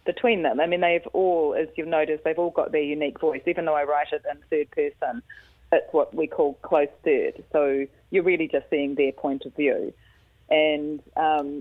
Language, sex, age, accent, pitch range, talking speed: English, female, 30-49, Australian, 150-185 Hz, 205 wpm